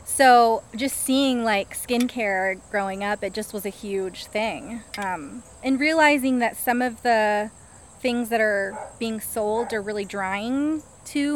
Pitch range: 205-245 Hz